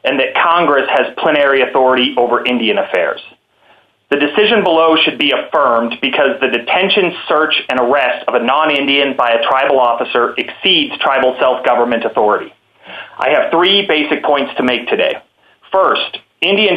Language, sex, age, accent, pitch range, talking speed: English, male, 30-49, American, 125-150 Hz, 150 wpm